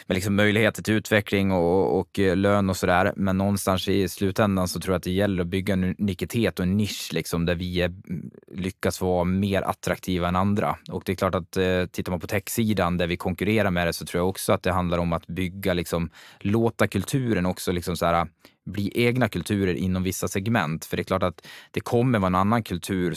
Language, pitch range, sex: English, 90-100 Hz, male